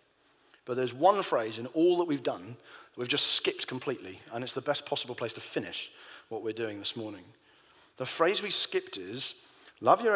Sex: male